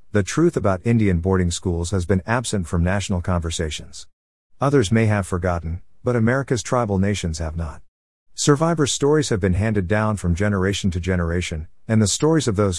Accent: American